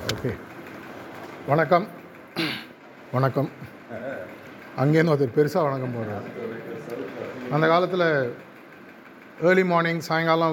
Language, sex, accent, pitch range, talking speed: Tamil, male, native, 140-175 Hz, 70 wpm